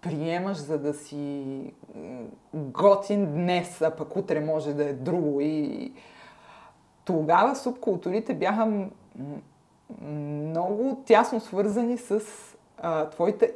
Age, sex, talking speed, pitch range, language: 30-49, female, 95 wpm, 165-225 Hz, Bulgarian